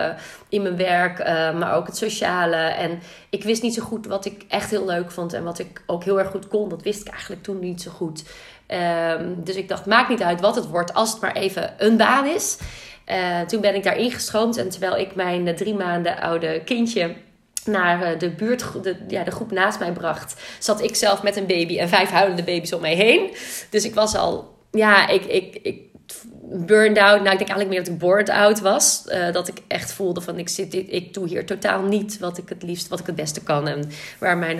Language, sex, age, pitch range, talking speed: Dutch, female, 30-49, 165-205 Hz, 225 wpm